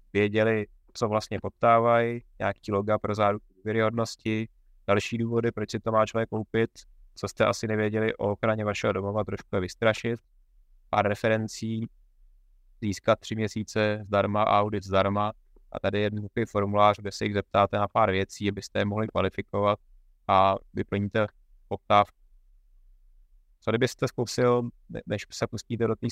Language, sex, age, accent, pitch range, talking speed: Czech, male, 20-39, native, 100-110 Hz, 145 wpm